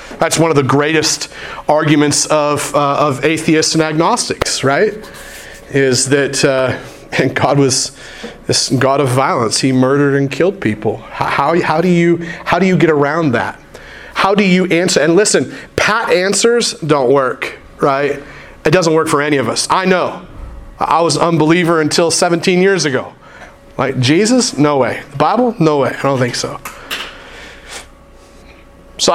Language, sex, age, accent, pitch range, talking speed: English, male, 30-49, American, 140-180 Hz, 165 wpm